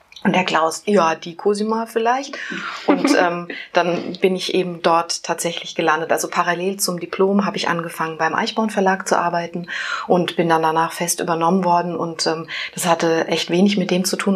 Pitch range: 165-190 Hz